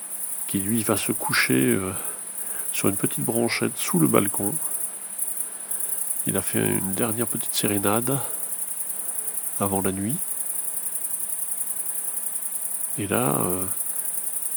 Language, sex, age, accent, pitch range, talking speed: French, male, 40-59, French, 95-115 Hz, 105 wpm